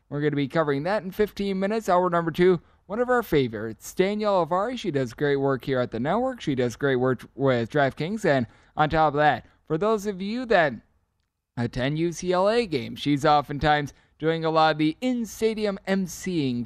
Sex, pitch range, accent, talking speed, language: male, 135-170 Hz, American, 195 wpm, English